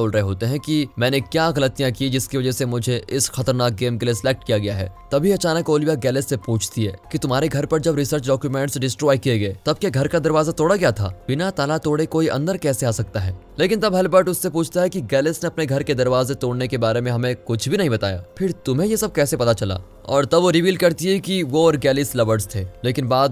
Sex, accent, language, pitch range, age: male, native, Hindi, 115-160 Hz, 20-39